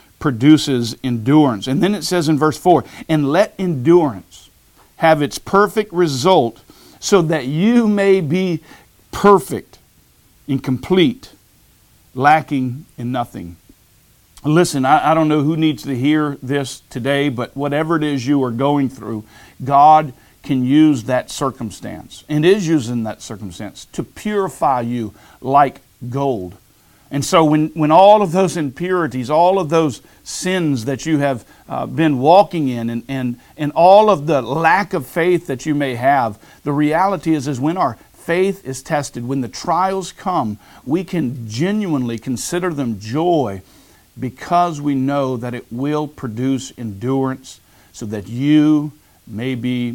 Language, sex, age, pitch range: English, male, 50-69, 120-160 Hz